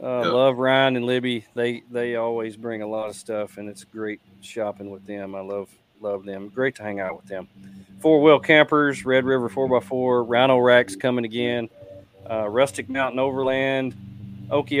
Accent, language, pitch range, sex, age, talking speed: American, English, 105-130 Hz, male, 40-59, 180 wpm